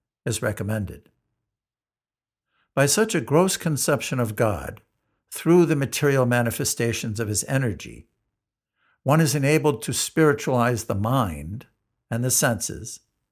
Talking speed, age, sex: 115 wpm, 60-79, male